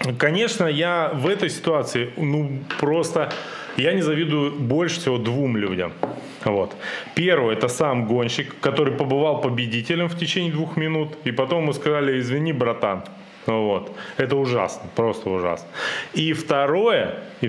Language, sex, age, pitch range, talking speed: Russian, male, 20-39, 115-160 Hz, 135 wpm